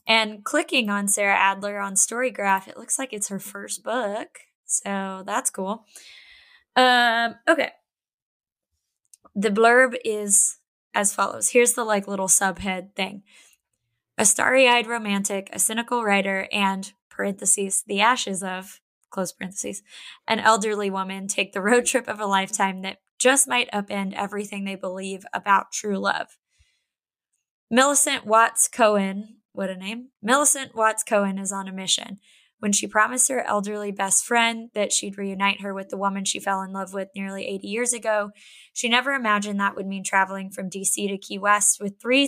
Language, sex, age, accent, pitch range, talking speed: English, female, 20-39, American, 195-235 Hz, 160 wpm